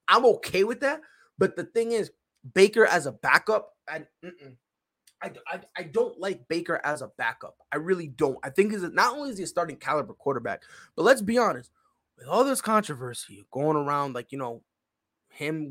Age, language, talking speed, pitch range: 20-39, English, 190 wpm, 140-210 Hz